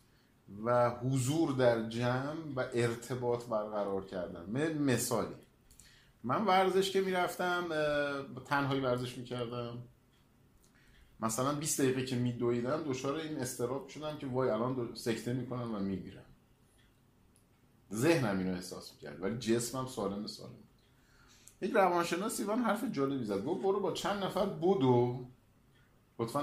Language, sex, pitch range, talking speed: Persian, male, 120-160 Hz, 120 wpm